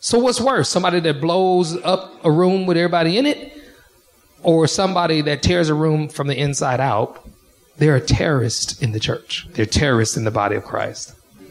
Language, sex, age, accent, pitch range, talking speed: English, male, 40-59, American, 135-225 Hz, 190 wpm